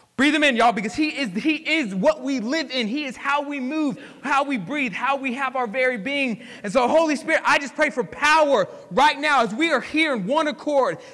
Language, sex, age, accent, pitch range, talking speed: English, male, 20-39, American, 245-300 Hz, 235 wpm